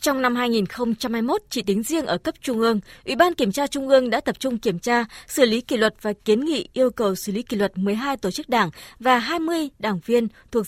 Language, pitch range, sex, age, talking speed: Vietnamese, 215-270 Hz, female, 20-39, 240 wpm